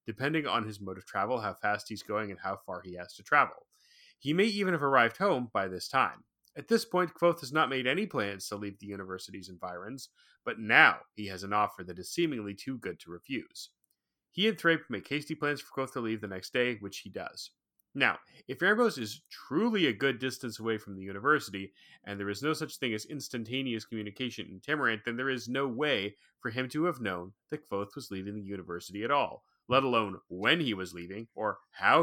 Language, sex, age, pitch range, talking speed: English, male, 30-49, 100-145 Hz, 220 wpm